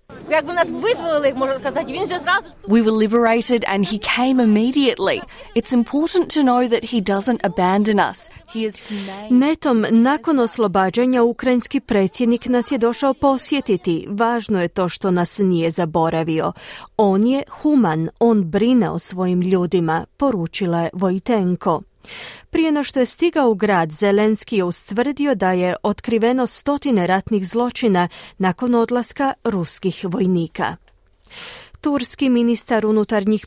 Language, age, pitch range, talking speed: Croatian, 30-49, 190-250 Hz, 100 wpm